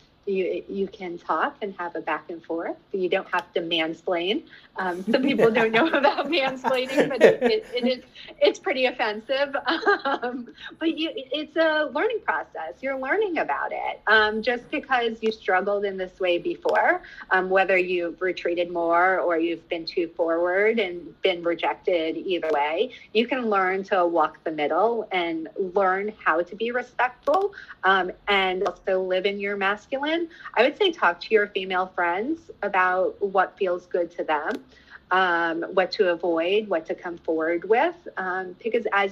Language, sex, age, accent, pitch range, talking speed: English, female, 30-49, American, 175-270 Hz, 170 wpm